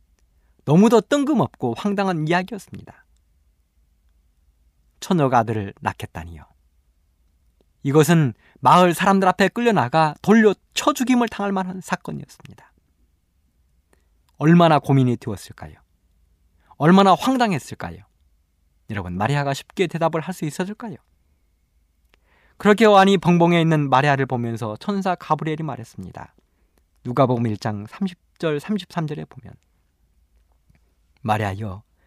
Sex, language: male, Korean